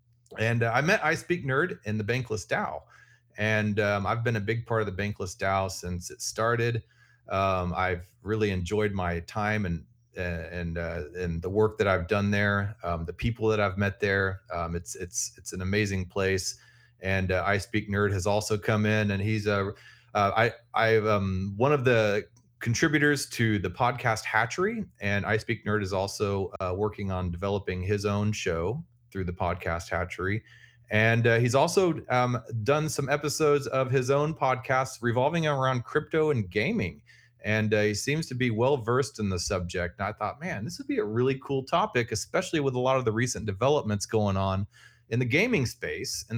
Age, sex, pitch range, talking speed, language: 30-49, male, 100-125 Hz, 195 wpm, English